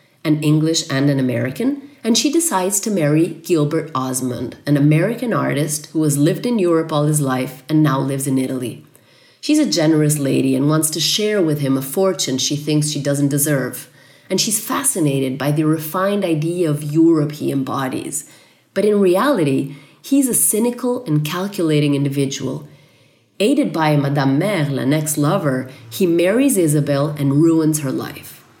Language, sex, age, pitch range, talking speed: Italian, female, 30-49, 140-180 Hz, 165 wpm